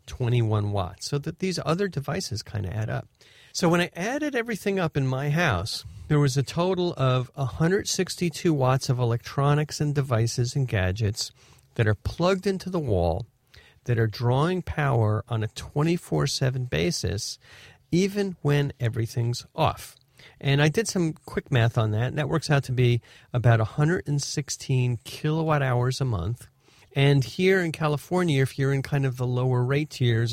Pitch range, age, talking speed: 115-150 Hz, 40-59, 165 wpm